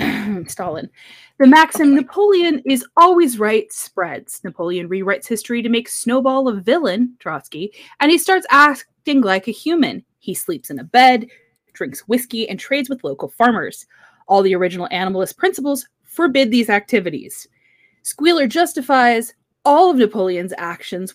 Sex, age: female, 20-39